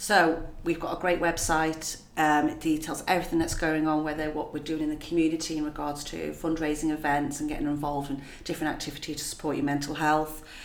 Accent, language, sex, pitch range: British, English, female, 150-170 Hz